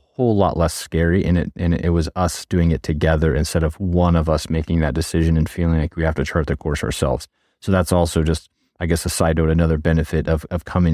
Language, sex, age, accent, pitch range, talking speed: English, male, 30-49, American, 80-95 Hz, 245 wpm